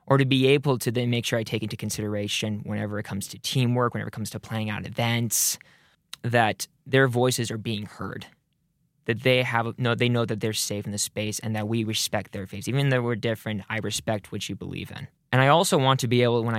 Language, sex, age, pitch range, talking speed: English, male, 20-39, 105-125 Hz, 240 wpm